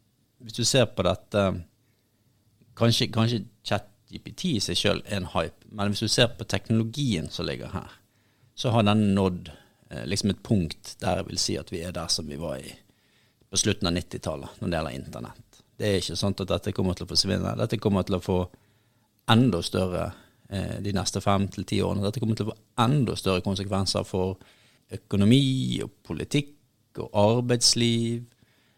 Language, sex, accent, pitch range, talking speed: English, male, Norwegian, 95-115 Hz, 185 wpm